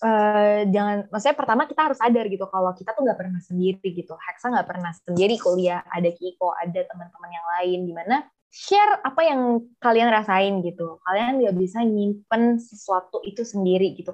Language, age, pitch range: Indonesian, 20-39, 185-245 Hz